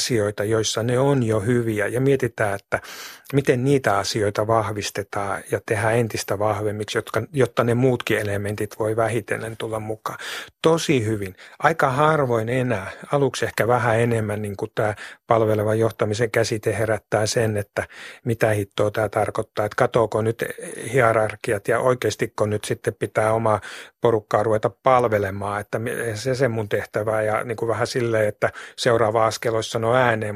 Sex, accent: male, native